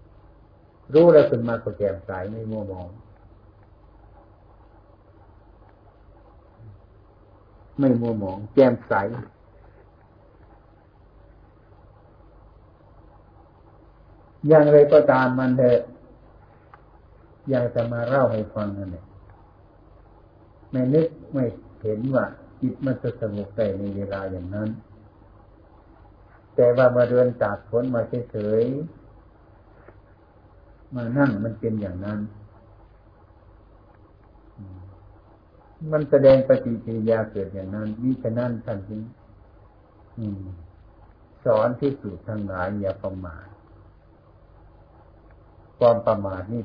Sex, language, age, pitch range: male, Thai, 60-79, 95-115 Hz